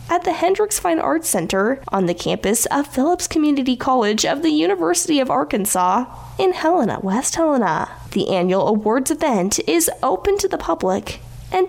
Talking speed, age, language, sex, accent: 165 wpm, 10-29, English, female, American